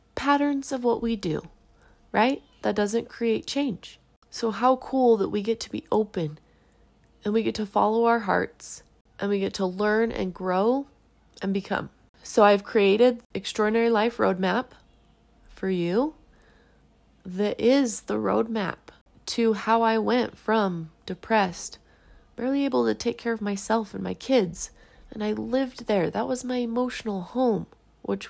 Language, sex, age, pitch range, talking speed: English, female, 20-39, 205-255 Hz, 155 wpm